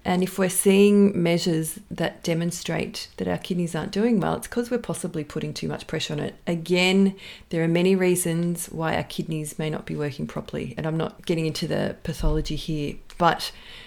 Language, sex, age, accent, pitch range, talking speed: English, female, 40-59, Australian, 165-205 Hz, 195 wpm